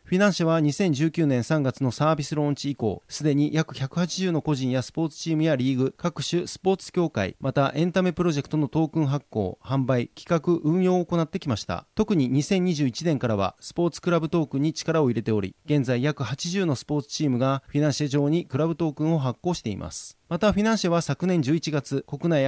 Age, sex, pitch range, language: 30-49, male, 135-165 Hz, Japanese